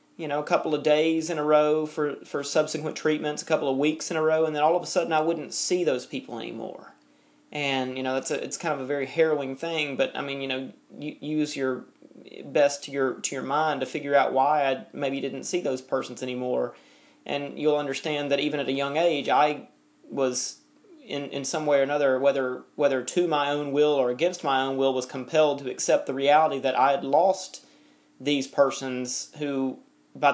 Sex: male